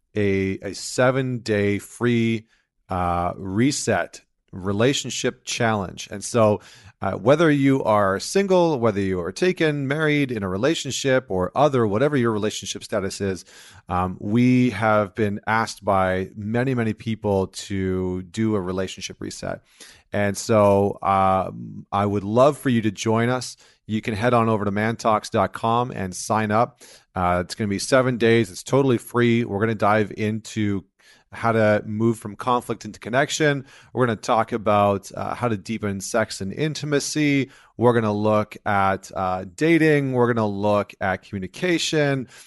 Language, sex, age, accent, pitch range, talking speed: English, male, 30-49, American, 100-125 Hz, 160 wpm